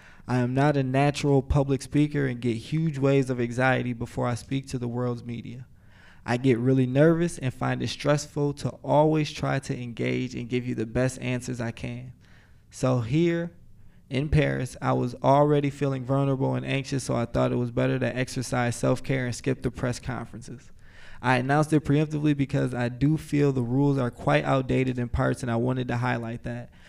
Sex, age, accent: male, 20-39, American